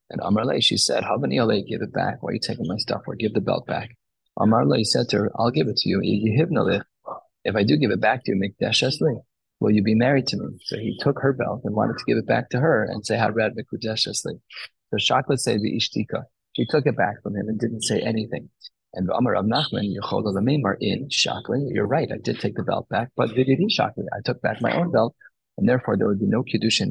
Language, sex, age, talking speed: English, male, 30-49, 205 wpm